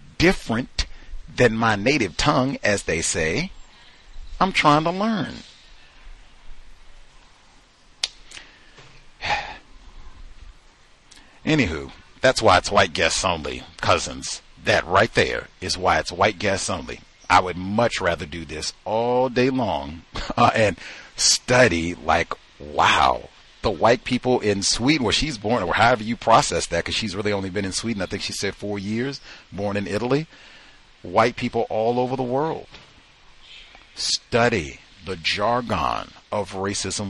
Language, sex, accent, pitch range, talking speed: English, male, American, 85-115 Hz, 135 wpm